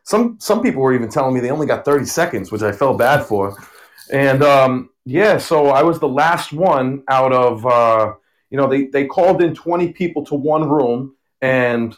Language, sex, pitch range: English, male, 115-150 Hz